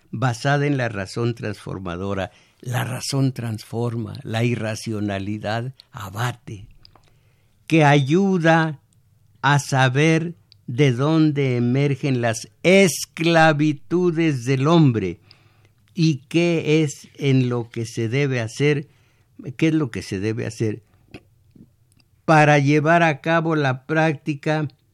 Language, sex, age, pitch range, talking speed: Spanish, male, 60-79, 110-150 Hz, 105 wpm